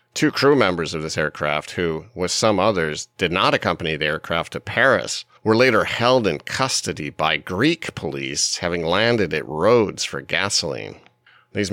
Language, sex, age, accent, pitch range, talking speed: English, male, 40-59, American, 75-105 Hz, 165 wpm